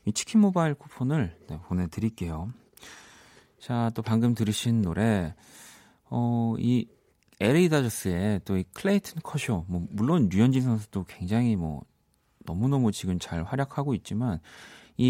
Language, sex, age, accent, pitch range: Korean, male, 40-59, native, 95-130 Hz